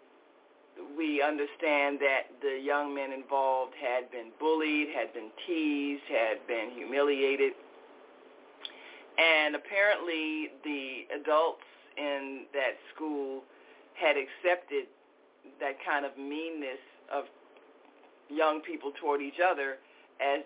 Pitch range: 140-165 Hz